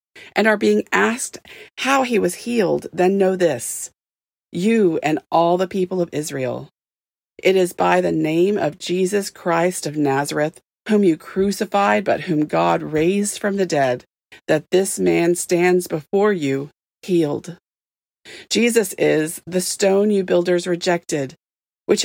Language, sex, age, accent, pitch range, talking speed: English, female, 40-59, American, 165-205 Hz, 145 wpm